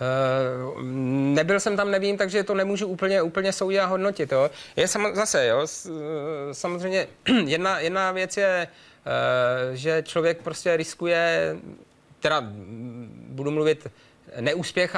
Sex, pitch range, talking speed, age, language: male, 135-160 Hz, 120 wpm, 30-49, Czech